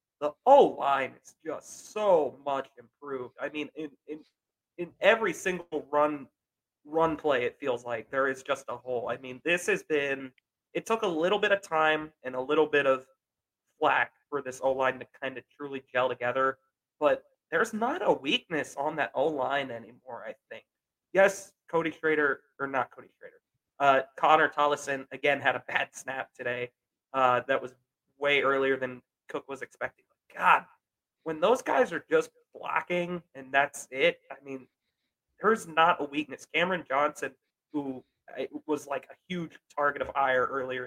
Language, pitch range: English, 135-165 Hz